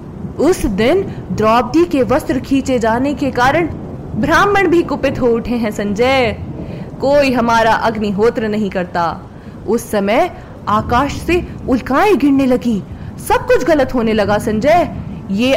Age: 20-39